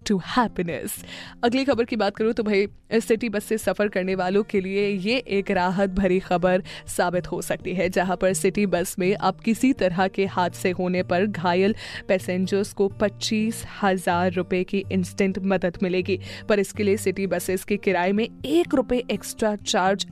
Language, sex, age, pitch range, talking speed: Hindi, female, 20-39, 195-225 Hz, 180 wpm